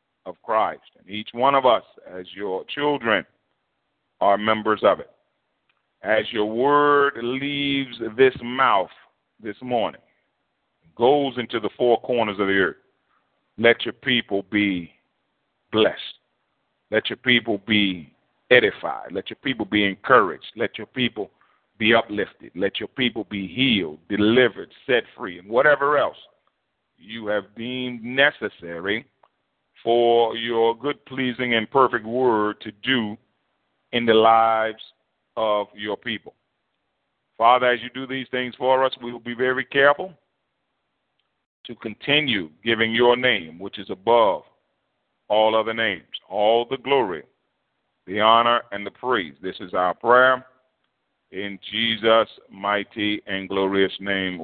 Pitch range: 100-125 Hz